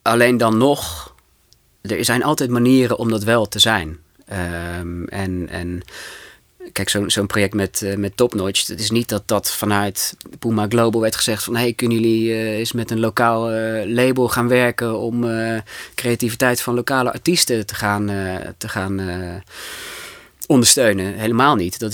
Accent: Dutch